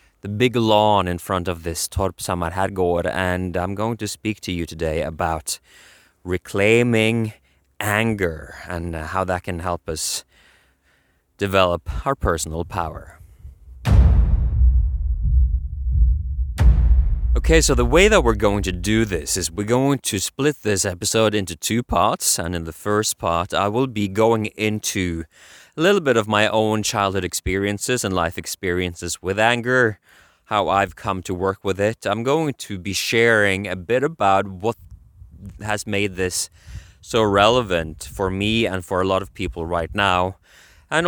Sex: male